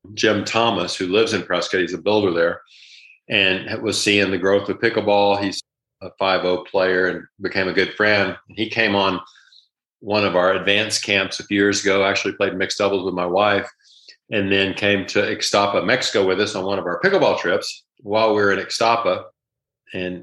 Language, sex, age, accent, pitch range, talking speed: English, male, 40-59, American, 95-105 Hz, 195 wpm